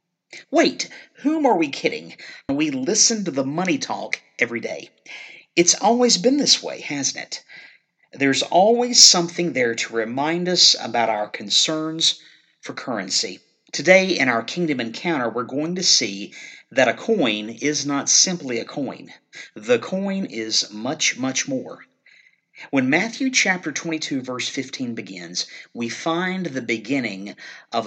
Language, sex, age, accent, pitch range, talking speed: English, male, 50-69, American, 125-195 Hz, 145 wpm